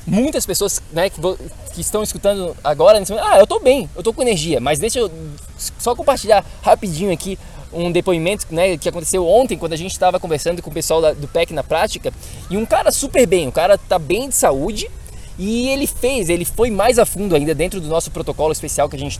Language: Portuguese